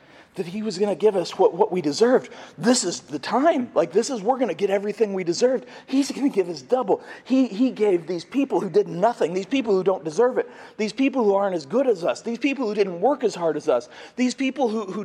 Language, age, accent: English, 40-59, American